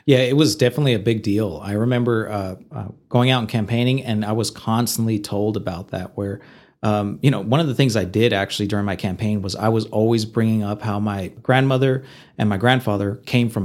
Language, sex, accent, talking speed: English, male, American, 220 wpm